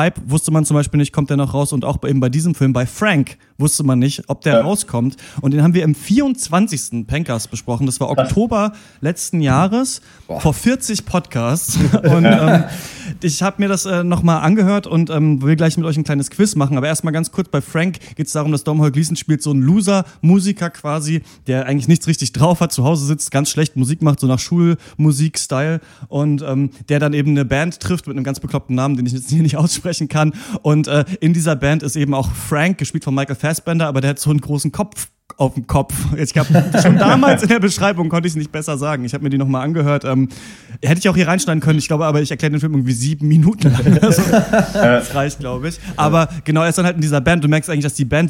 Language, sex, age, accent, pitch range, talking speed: German, male, 30-49, German, 135-170 Hz, 240 wpm